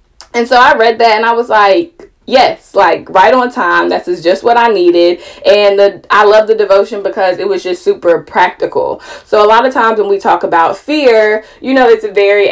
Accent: American